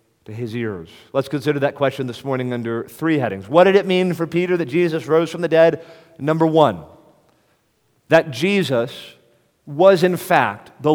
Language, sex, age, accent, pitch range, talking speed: English, male, 40-59, American, 135-175 Hz, 175 wpm